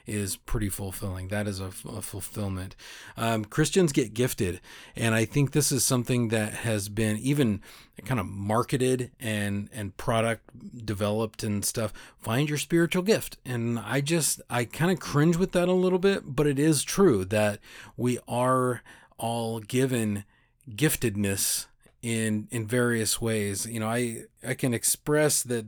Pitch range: 105-130 Hz